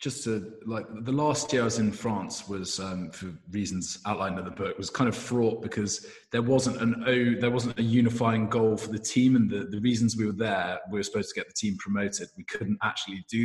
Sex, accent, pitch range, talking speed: male, British, 100-120 Hz, 240 wpm